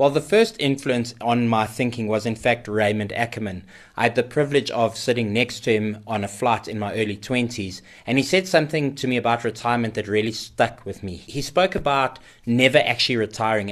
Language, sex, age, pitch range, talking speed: English, male, 20-39, 105-125 Hz, 205 wpm